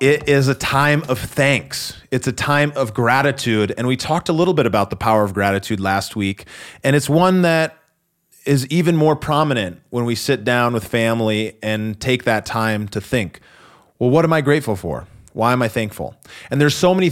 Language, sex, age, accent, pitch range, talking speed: English, male, 30-49, American, 110-140 Hz, 205 wpm